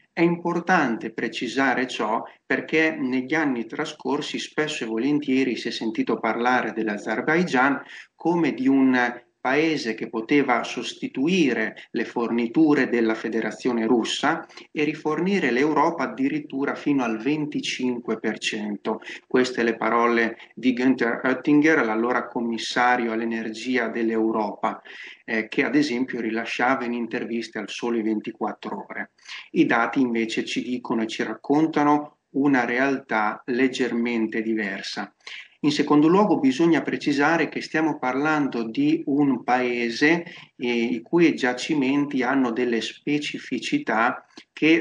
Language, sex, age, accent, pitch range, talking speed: Italian, male, 30-49, native, 115-150 Hz, 115 wpm